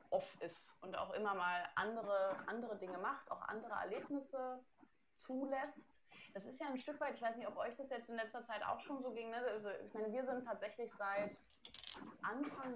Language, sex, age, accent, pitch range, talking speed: English, female, 20-39, German, 195-255 Hz, 200 wpm